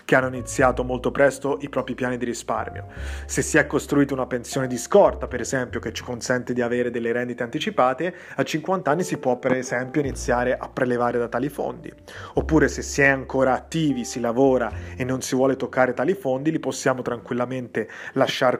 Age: 30-49